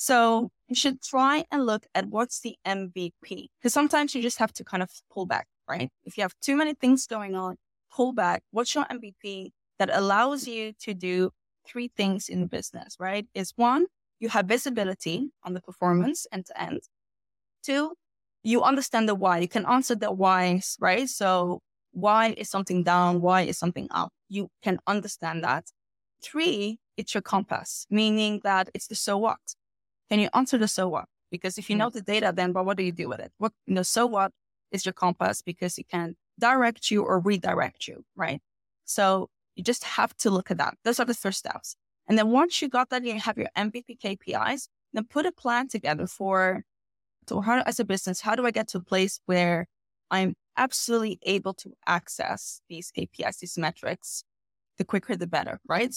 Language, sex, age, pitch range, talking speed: English, female, 20-39, 185-240 Hz, 200 wpm